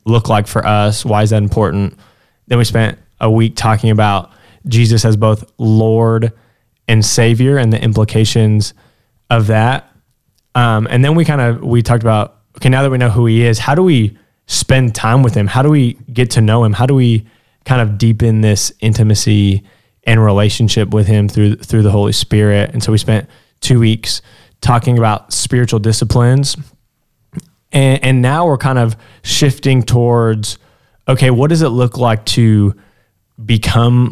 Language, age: English, 10-29